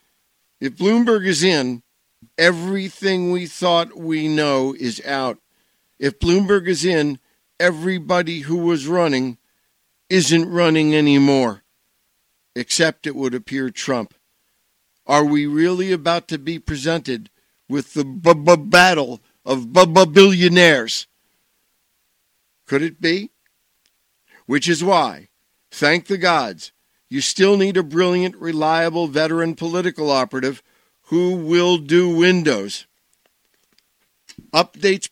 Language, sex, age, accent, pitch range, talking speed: English, male, 50-69, American, 140-175 Hz, 110 wpm